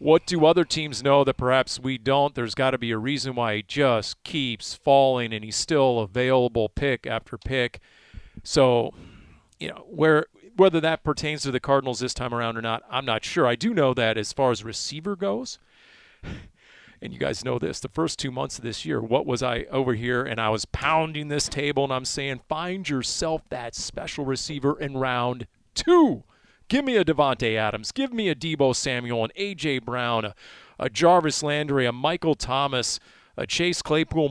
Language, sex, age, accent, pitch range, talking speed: English, male, 40-59, American, 120-160 Hz, 190 wpm